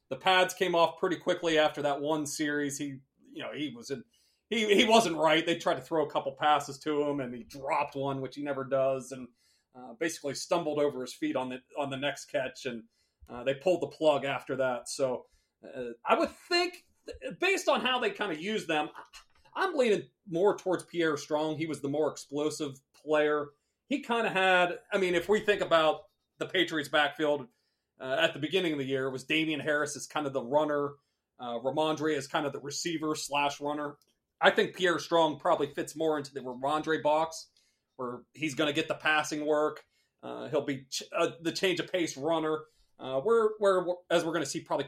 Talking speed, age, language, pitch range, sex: 210 wpm, 30-49, English, 140-170 Hz, male